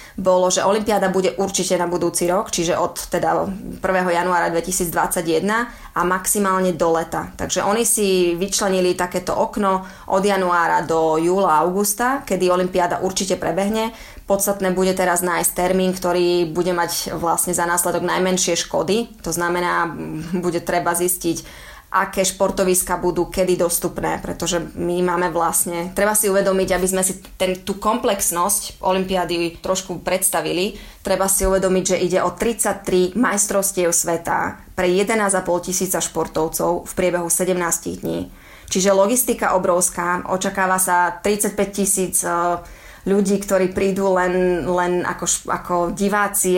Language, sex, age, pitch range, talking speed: Slovak, female, 20-39, 175-195 Hz, 135 wpm